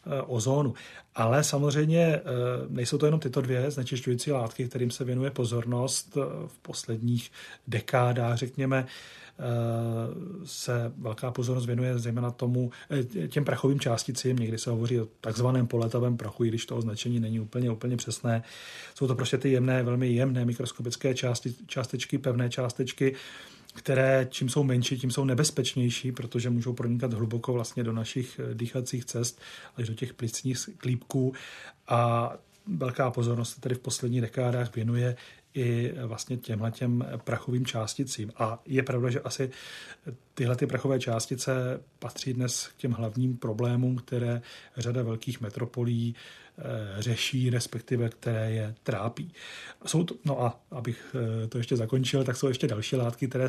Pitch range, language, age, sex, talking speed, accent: 120-130 Hz, Czech, 30-49, male, 145 wpm, native